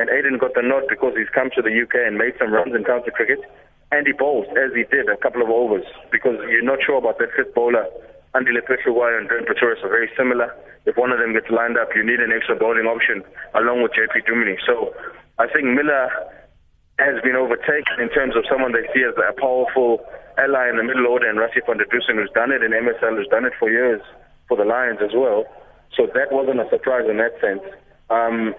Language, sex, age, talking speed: English, male, 20-39, 230 wpm